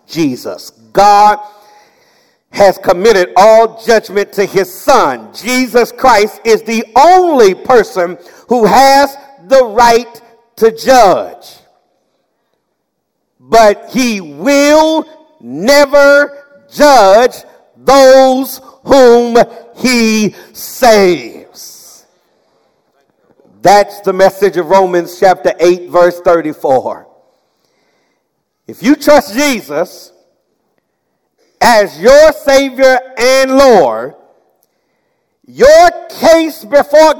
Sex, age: male, 50-69